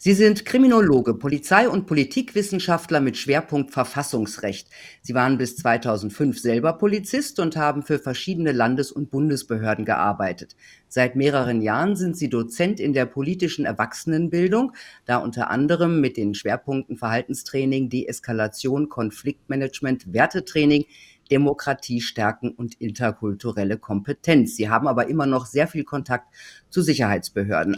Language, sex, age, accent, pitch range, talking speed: German, female, 50-69, German, 115-155 Hz, 125 wpm